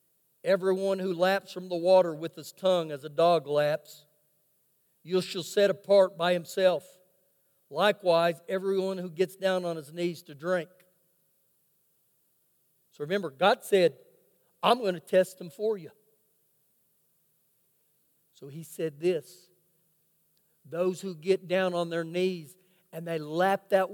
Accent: American